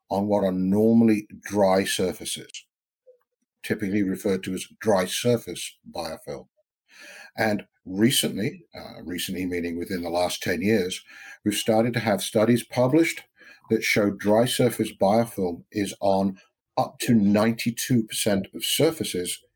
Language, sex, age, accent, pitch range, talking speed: English, male, 60-79, British, 100-125 Hz, 125 wpm